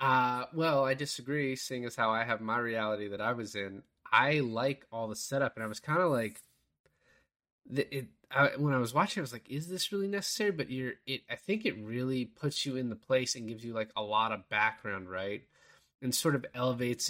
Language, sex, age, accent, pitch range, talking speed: English, male, 20-39, American, 105-140 Hz, 230 wpm